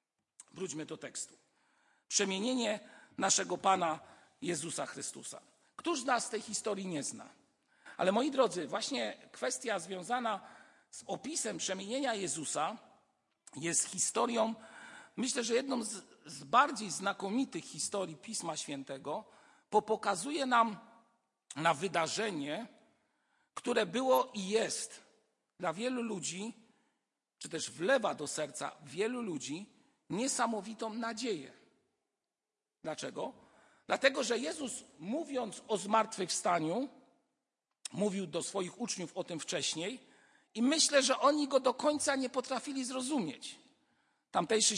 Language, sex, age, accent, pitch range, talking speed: Polish, male, 50-69, native, 195-260 Hz, 110 wpm